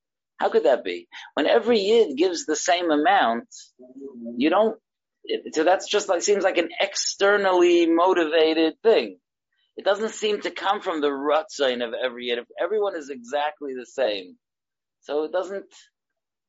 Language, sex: English, male